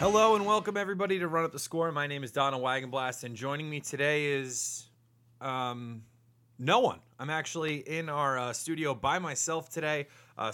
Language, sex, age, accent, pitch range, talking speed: English, male, 30-49, American, 115-140 Hz, 180 wpm